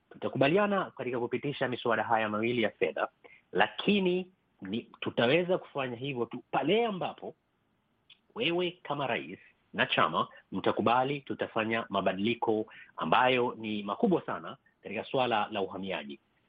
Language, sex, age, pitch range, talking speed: Swahili, male, 30-49, 115-145 Hz, 115 wpm